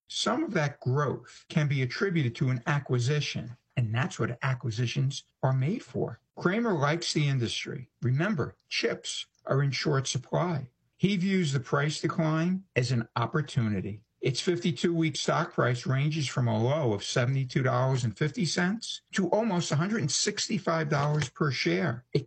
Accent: American